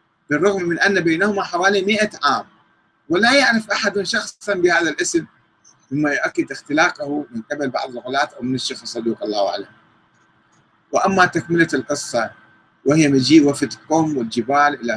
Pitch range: 120-175 Hz